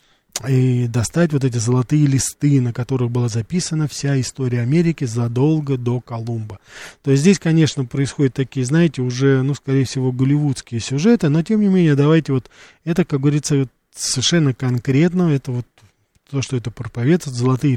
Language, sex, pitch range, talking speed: Russian, male, 125-150 Hz, 160 wpm